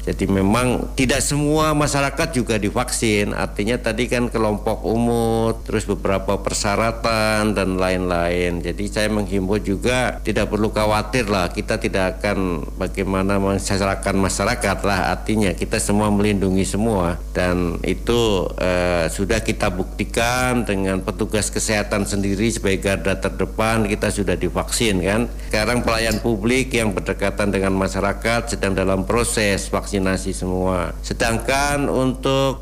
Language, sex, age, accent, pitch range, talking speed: Indonesian, male, 50-69, native, 100-115 Hz, 125 wpm